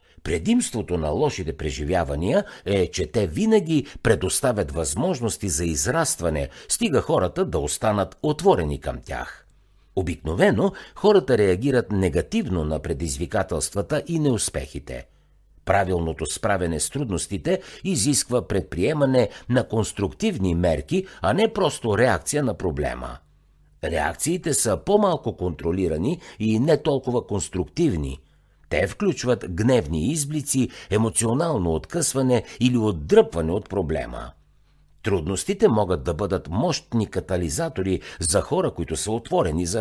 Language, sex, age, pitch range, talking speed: Bulgarian, male, 60-79, 85-140 Hz, 110 wpm